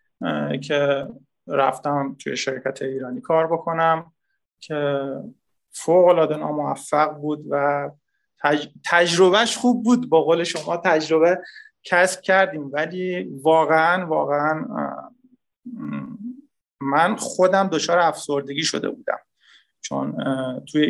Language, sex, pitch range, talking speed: Persian, male, 145-180 Hz, 90 wpm